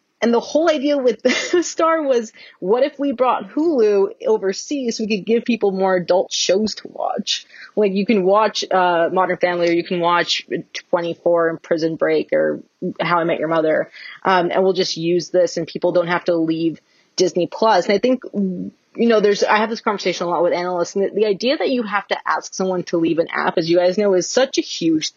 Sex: female